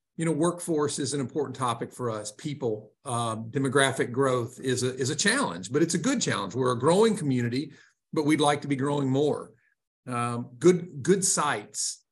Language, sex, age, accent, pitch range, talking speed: English, male, 50-69, American, 130-165 Hz, 190 wpm